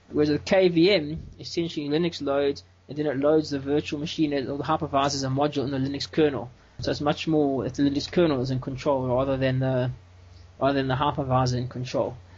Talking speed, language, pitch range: 205 wpm, English, 130-160 Hz